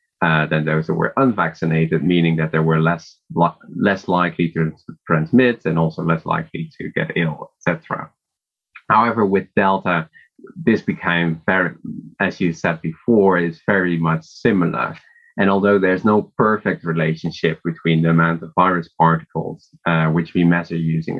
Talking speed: 160 wpm